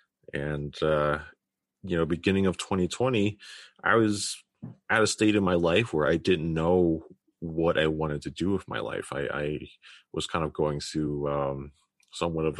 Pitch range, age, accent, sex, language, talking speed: 75-90 Hz, 30-49, American, male, English, 175 wpm